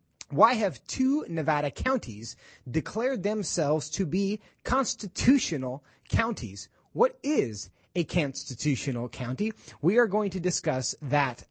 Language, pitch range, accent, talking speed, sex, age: English, 125-180 Hz, American, 115 wpm, male, 30-49